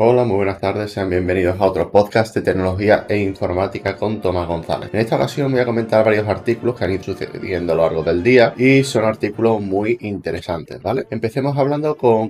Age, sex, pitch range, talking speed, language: 20-39, male, 90-115 Hz, 205 wpm, Spanish